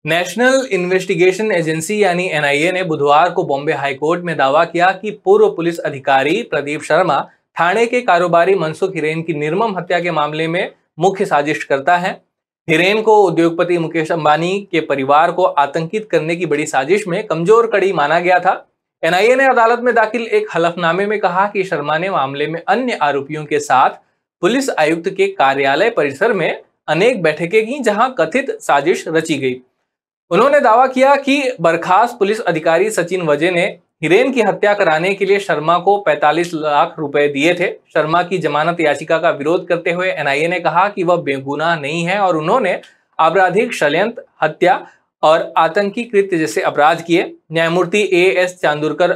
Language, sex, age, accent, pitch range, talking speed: Hindi, male, 20-39, native, 155-200 Hz, 165 wpm